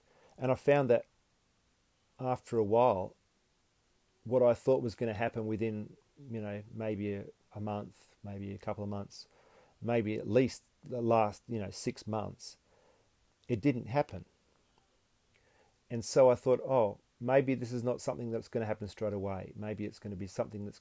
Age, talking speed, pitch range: 40-59, 175 wpm, 105-125 Hz